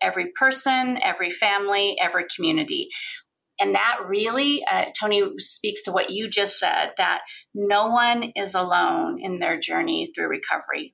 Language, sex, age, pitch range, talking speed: English, female, 30-49, 200-280 Hz, 150 wpm